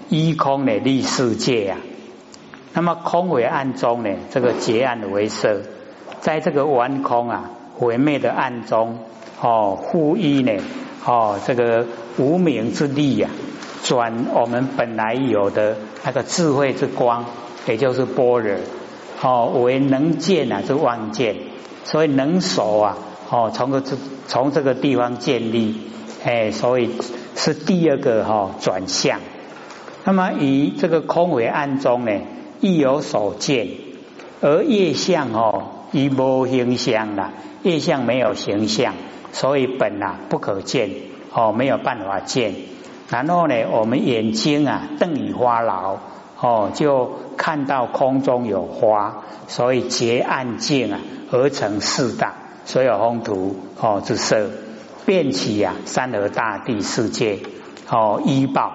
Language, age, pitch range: Chinese, 60-79, 115-145 Hz